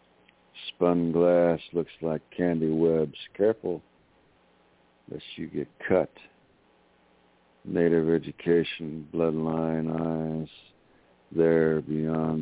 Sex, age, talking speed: male, 60-79, 80 wpm